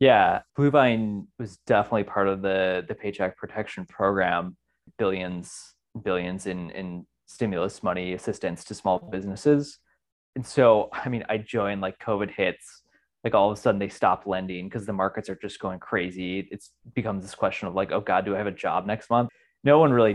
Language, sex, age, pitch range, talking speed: English, male, 20-39, 95-120 Hz, 190 wpm